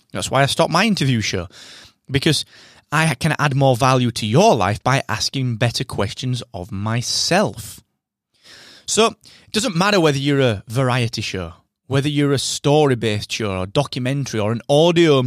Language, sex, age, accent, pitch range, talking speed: English, male, 30-49, British, 110-155 Hz, 160 wpm